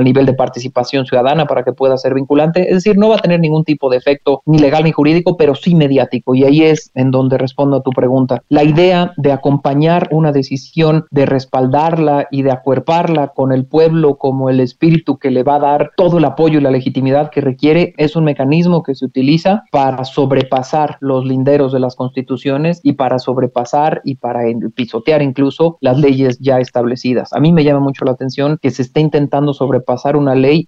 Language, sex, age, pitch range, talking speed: Spanish, male, 40-59, 130-150 Hz, 205 wpm